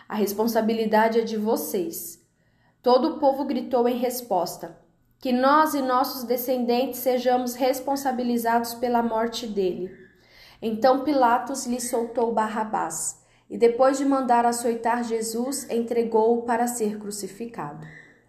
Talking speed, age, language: 120 wpm, 10-29, Portuguese